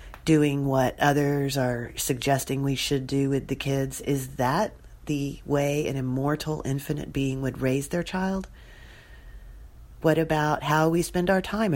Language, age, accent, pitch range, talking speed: English, 40-59, American, 135-160 Hz, 155 wpm